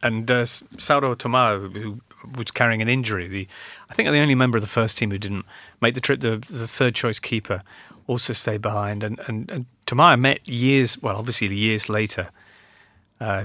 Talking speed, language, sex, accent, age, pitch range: 185 wpm, English, male, British, 40-59, 110-130 Hz